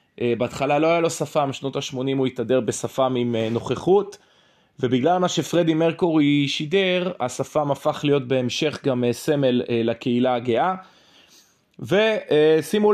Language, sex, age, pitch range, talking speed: Hebrew, male, 20-39, 130-170 Hz, 120 wpm